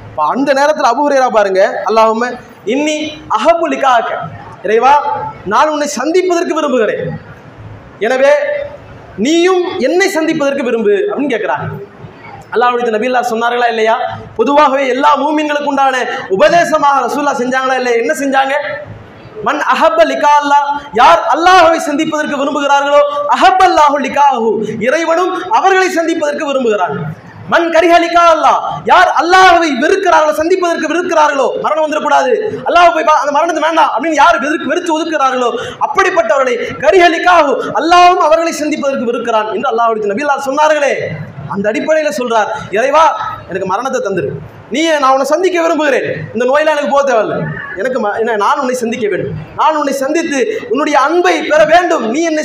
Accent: Indian